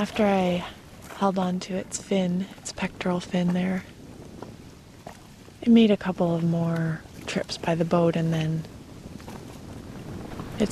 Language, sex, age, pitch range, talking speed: English, female, 20-39, 175-205 Hz, 135 wpm